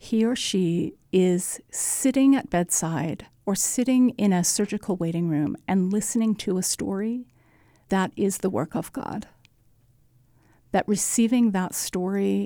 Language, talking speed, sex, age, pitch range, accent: English, 140 wpm, female, 50-69, 170-210 Hz, American